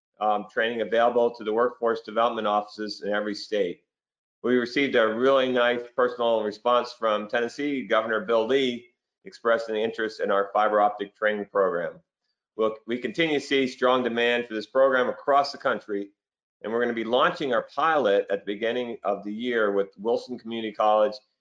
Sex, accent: male, American